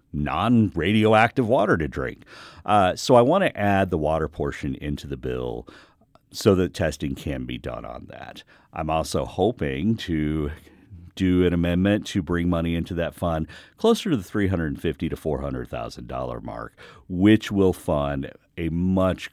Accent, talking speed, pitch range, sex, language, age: American, 155 wpm, 70-100 Hz, male, English, 50-69